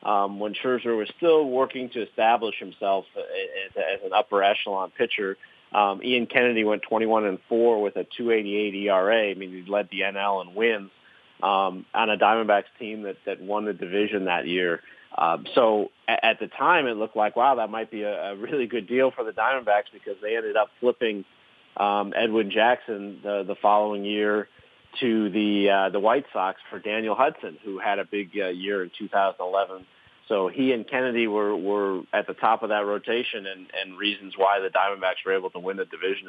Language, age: English, 30-49